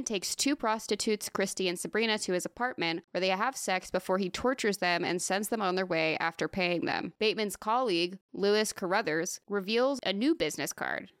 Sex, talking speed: female, 190 wpm